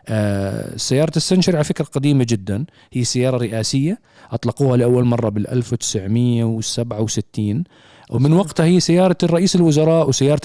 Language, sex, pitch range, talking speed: Arabic, male, 115-145 Hz, 120 wpm